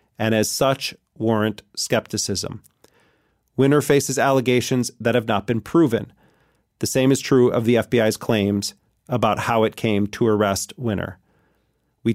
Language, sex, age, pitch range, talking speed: English, male, 40-59, 110-125 Hz, 145 wpm